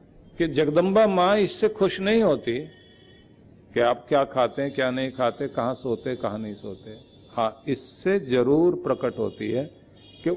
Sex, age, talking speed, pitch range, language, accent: male, 50-69, 155 wpm, 110-175 Hz, Hindi, native